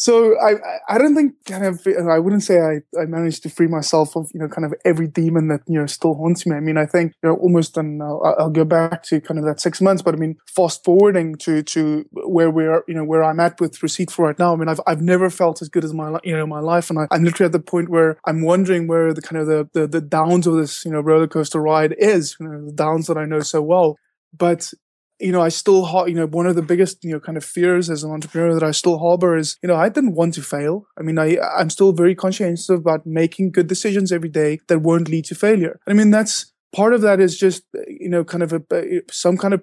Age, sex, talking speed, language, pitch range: 20-39, male, 275 wpm, English, 160-180 Hz